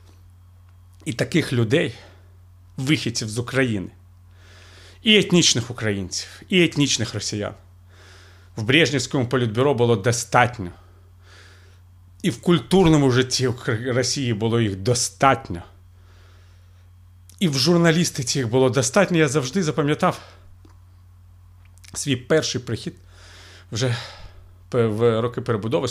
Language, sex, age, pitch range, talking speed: Ukrainian, male, 40-59, 90-135 Hz, 95 wpm